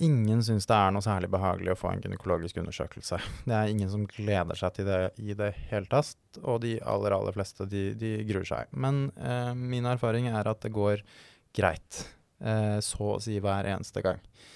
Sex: male